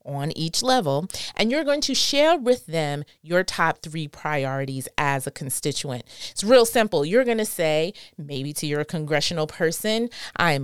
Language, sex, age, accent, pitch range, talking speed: English, female, 30-49, American, 155-225 Hz, 170 wpm